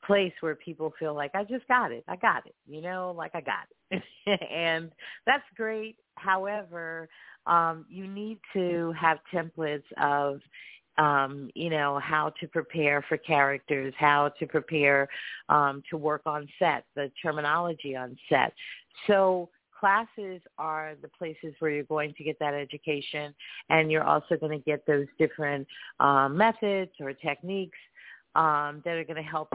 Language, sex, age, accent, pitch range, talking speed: English, female, 40-59, American, 150-180 Hz, 160 wpm